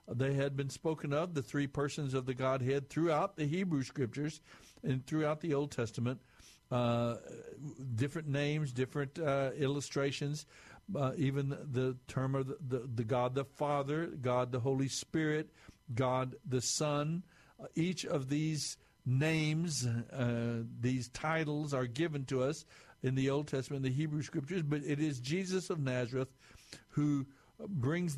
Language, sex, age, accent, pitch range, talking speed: English, male, 60-79, American, 130-150 Hz, 145 wpm